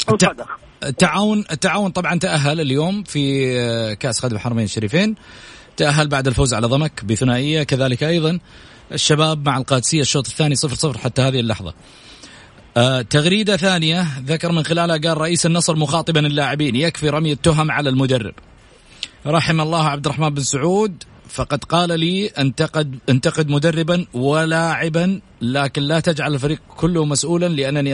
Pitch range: 130-165 Hz